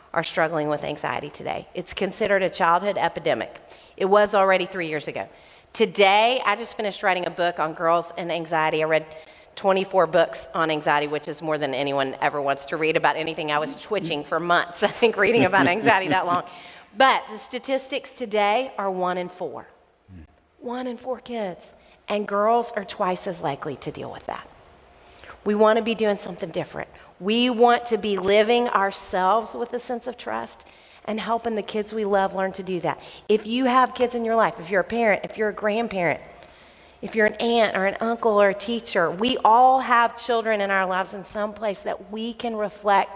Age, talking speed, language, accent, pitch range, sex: 40-59, 200 wpm, English, American, 170-215 Hz, female